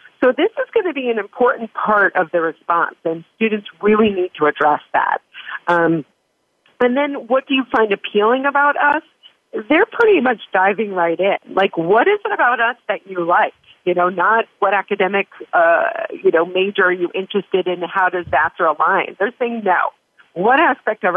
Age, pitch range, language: 40-59, 170-225 Hz, English